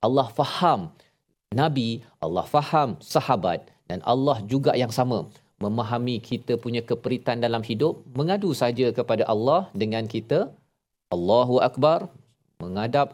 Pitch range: 115-135 Hz